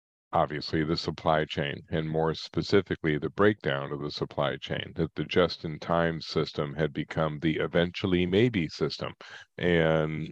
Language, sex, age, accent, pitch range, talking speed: English, male, 40-59, American, 75-85 Hz, 150 wpm